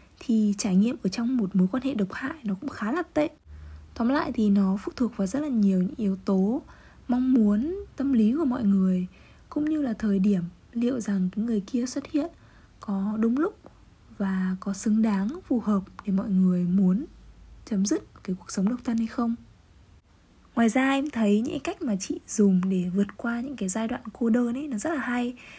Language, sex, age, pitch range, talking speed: Vietnamese, female, 20-39, 195-260 Hz, 220 wpm